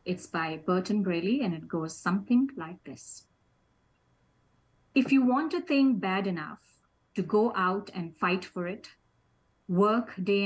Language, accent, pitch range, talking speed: English, Indian, 195-265 Hz, 150 wpm